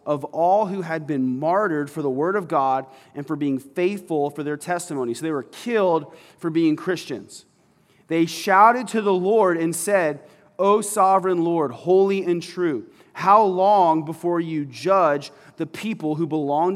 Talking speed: 170 wpm